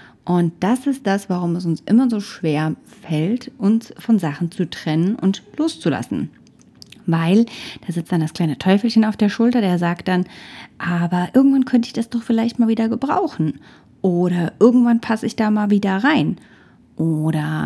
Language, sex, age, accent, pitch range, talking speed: German, female, 30-49, German, 170-225 Hz, 170 wpm